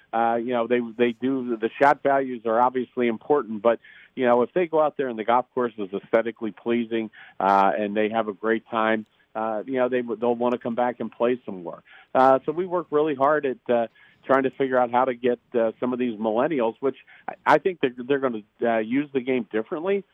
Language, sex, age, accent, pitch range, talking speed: English, male, 50-69, American, 115-135 Hz, 240 wpm